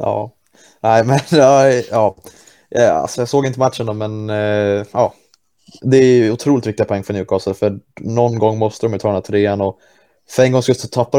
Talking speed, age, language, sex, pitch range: 200 wpm, 20-39, Swedish, male, 105-125 Hz